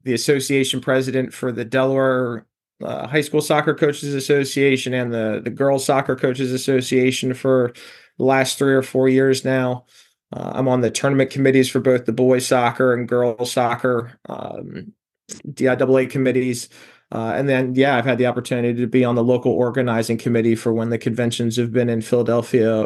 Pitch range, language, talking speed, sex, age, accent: 120-135 Hz, English, 175 wpm, male, 20-39, American